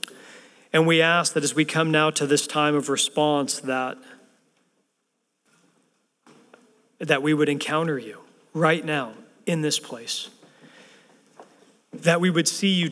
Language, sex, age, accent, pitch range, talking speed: English, male, 40-59, American, 140-165 Hz, 135 wpm